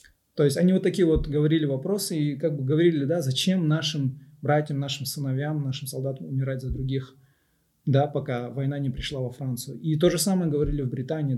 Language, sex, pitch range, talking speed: Russian, male, 135-155 Hz, 195 wpm